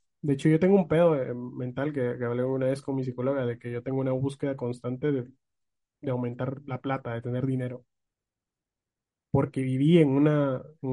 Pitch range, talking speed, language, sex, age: 125-140 Hz, 190 wpm, Spanish, male, 20-39